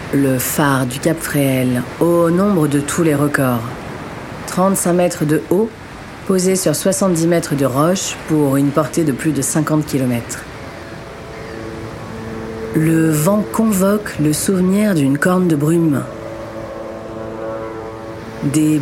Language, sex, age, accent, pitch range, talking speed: French, female, 40-59, French, 135-175 Hz, 120 wpm